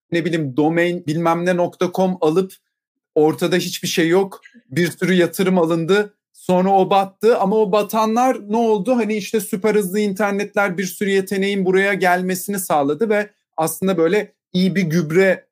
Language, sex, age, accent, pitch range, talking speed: English, male, 40-59, Turkish, 145-195 Hz, 150 wpm